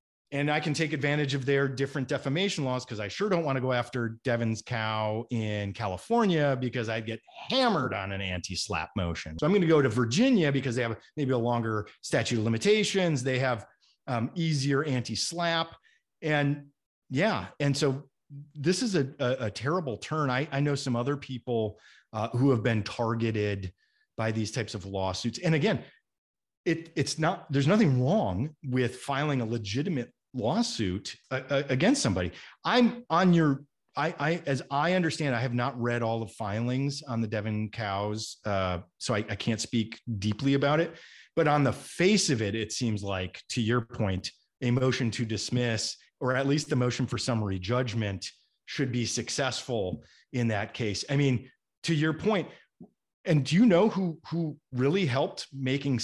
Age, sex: 30-49, male